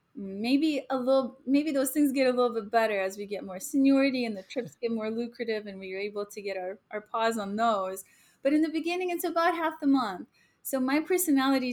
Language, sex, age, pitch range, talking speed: English, female, 30-49, 215-260 Hz, 225 wpm